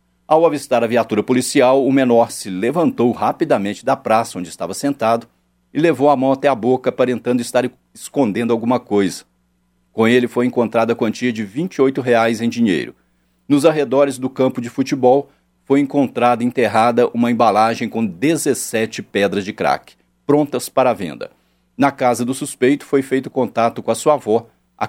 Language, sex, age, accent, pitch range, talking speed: Portuguese, male, 50-69, Brazilian, 105-130 Hz, 165 wpm